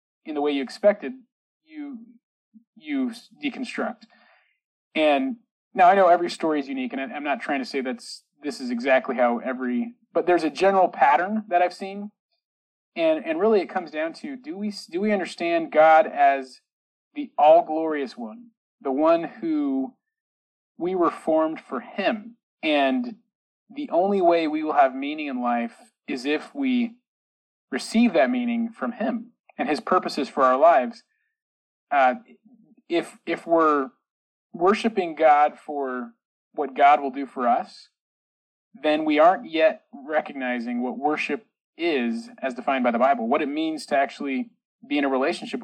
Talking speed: 160 wpm